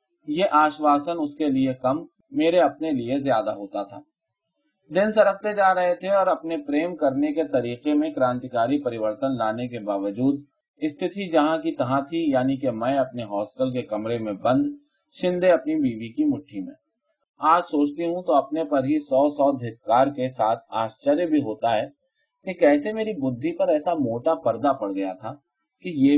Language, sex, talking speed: Urdu, male, 160 wpm